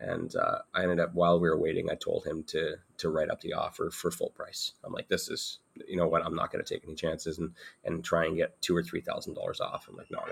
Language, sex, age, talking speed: English, male, 30-49, 285 wpm